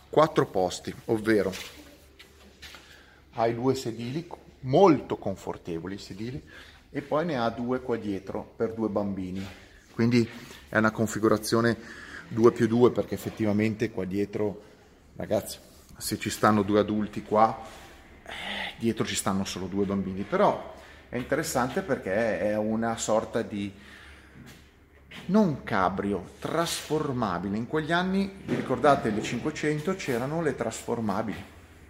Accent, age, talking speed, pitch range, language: native, 30-49, 125 wpm, 100-140 Hz, Italian